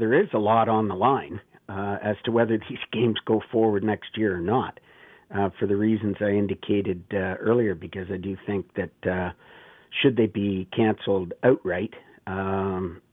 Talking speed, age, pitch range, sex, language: 180 wpm, 50-69, 100-115 Hz, male, English